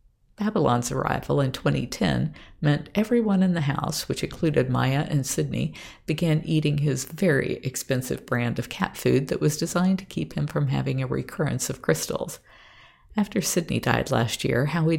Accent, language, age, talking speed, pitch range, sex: American, English, 50-69, 165 wpm, 130-165 Hz, female